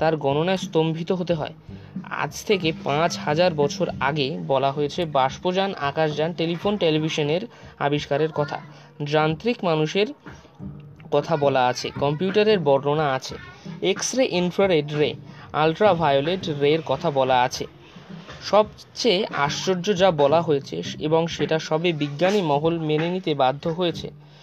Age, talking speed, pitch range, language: 20-39, 45 wpm, 145-185 Hz, Bengali